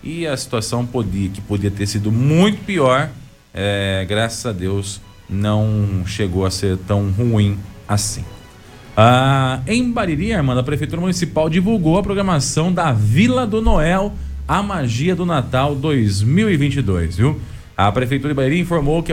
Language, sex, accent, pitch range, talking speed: Portuguese, male, Brazilian, 110-165 Hz, 150 wpm